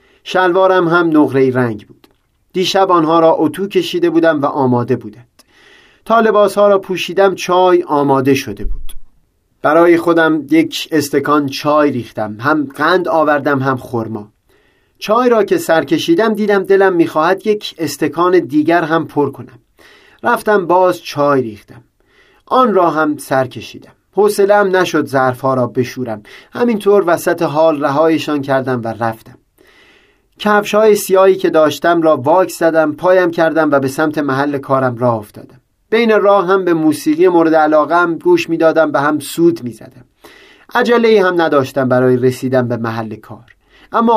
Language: Persian